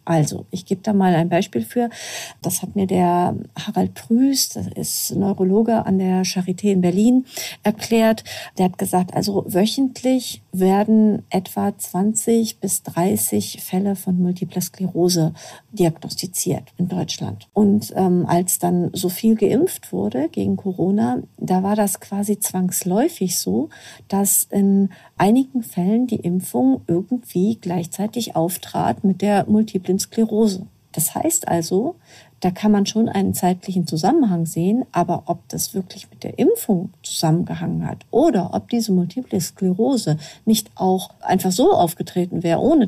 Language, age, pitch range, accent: German, 50-69, 180-220 Hz, German